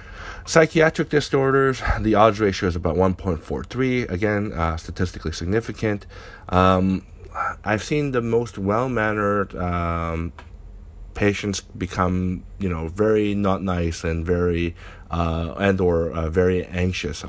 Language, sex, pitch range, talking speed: English, male, 85-105 Hz, 115 wpm